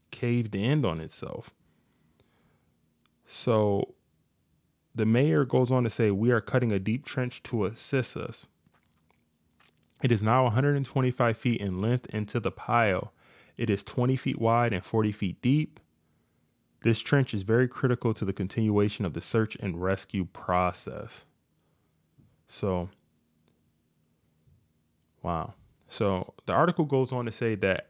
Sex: male